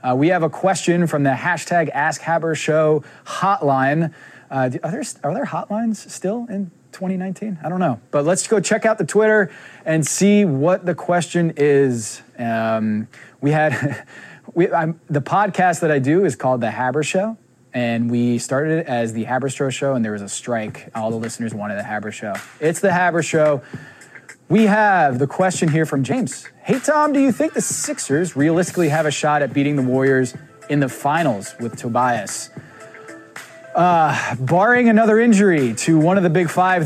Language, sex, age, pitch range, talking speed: English, male, 20-39, 140-195 Hz, 185 wpm